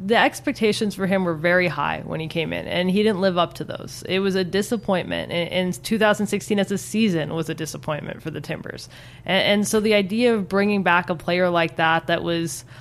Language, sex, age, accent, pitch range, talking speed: English, female, 20-39, American, 170-200 Hz, 215 wpm